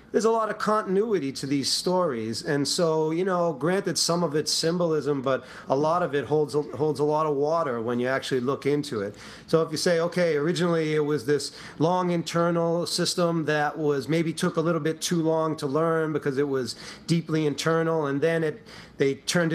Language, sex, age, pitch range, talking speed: English, male, 40-59, 135-165 Hz, 205 wpm